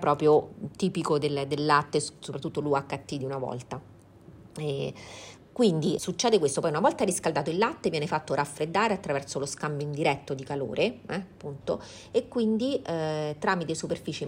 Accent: native